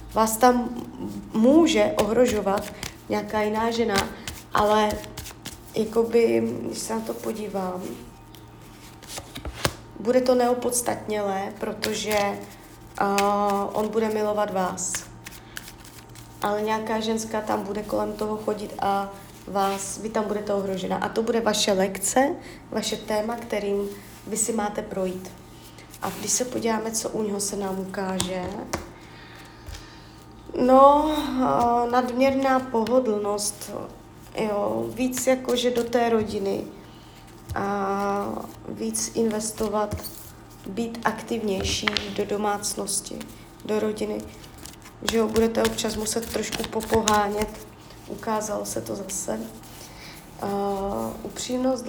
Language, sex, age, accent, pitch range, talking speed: Czech, female, 30-49, native, 195-230 Hz, 105 wpm